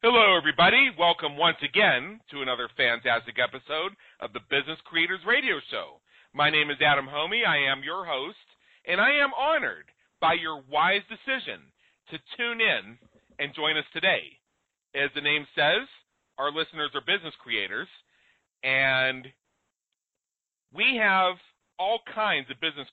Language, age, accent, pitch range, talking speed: English, 40-59, American, 140-180 Hz, 145 wpm